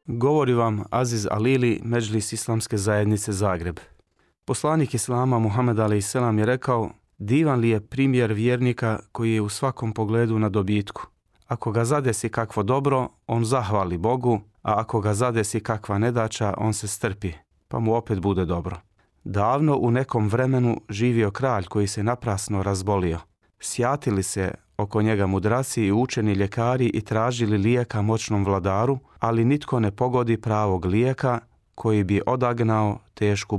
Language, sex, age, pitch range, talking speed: Croatian, male, 30-49, 105-120 Hz, 145 wpm